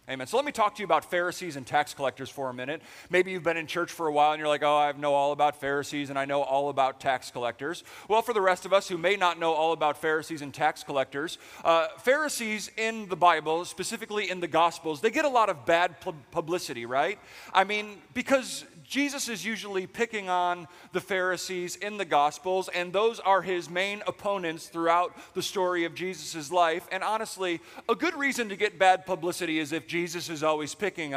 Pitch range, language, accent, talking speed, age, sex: 160-205 Hz, English, American, 215 wpm, 30-49, male